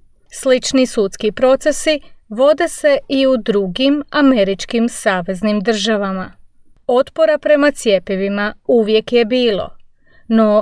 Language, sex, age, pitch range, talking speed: English, female, 30-49, 205-280 Hz, 100 wpm